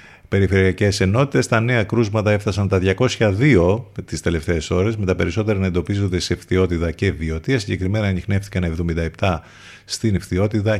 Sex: male